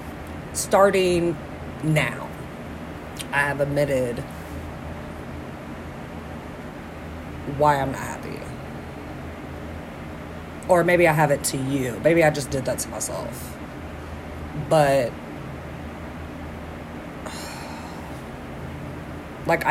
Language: English